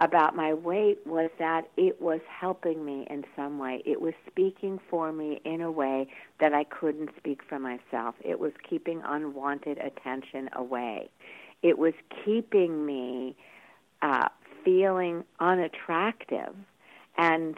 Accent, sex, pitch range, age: American, female, 130-165 Hz, 50-69